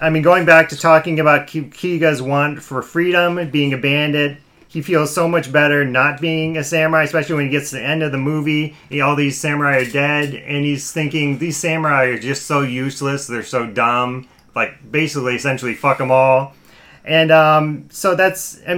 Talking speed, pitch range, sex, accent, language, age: 200 wpm, 130-160 Hz, male, American, English, 30-49